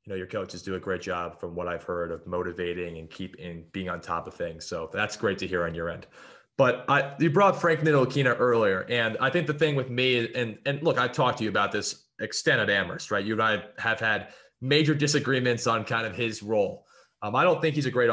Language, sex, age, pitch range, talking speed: English, male, 20-39, 110-140 Hz, 250 wpm